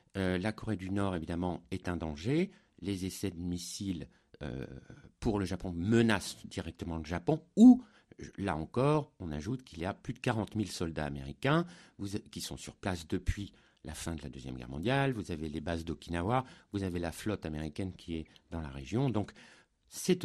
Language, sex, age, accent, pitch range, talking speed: French, male, 60-79, French, 95-150 Hz, 195 wpm